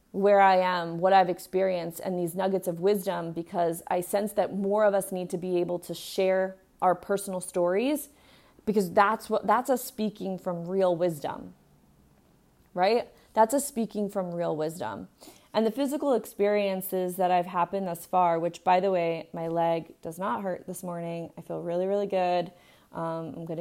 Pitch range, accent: 180-220 Hz, American